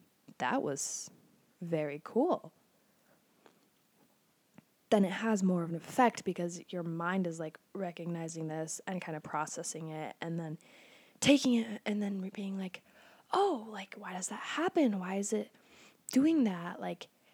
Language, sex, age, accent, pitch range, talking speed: English, female, 10-29, American, 180-240 Hz, 150 wpm